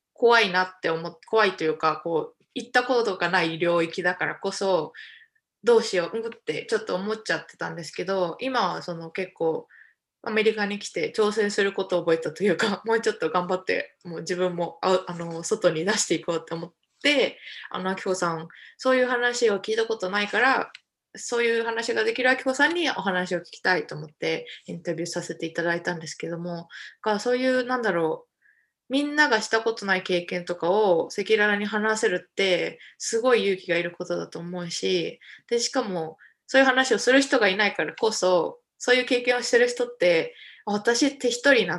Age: 20-39